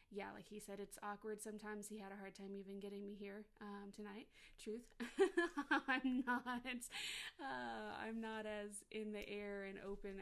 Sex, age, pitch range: female, 20-39, 195-220 Hz